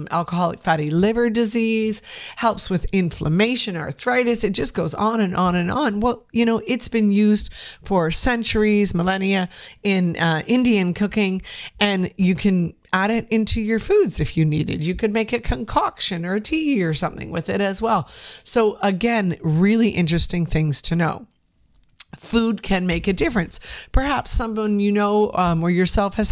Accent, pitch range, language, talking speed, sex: American, 165-210 Hz, English, 170 wpm, female